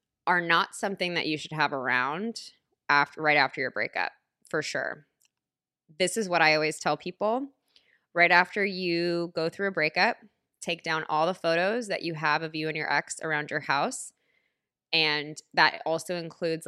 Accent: American